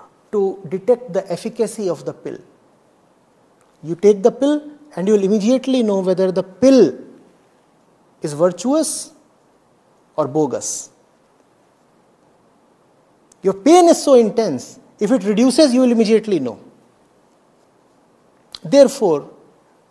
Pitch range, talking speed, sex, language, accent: 200-255 Hz, 105 wpm, male, English, Indian